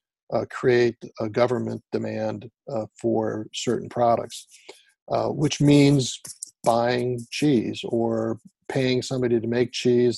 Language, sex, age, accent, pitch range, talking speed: English, male, 50-69, American, 110-130 Hz, 120 wpm